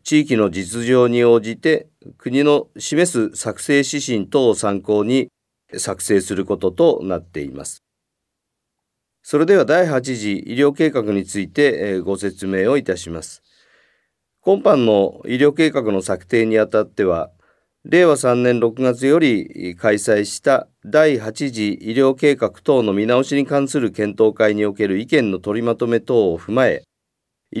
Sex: male